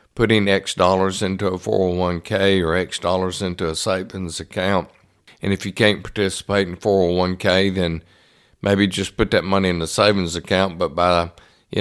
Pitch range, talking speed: 90-100 Hz, 170 wpm